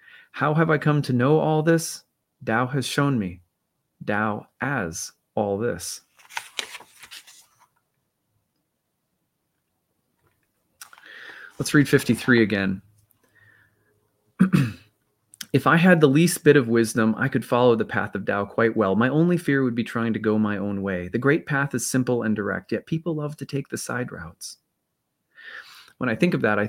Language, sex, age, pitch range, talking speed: English, male, 30-49, 105-140 Hz, 155 wpm